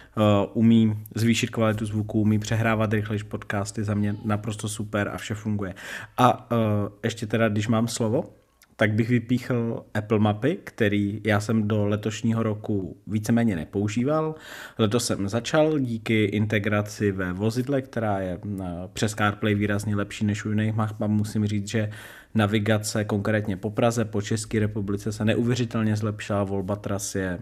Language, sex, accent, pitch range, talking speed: Czech, male, native, 100-110 Hz, 150 wpm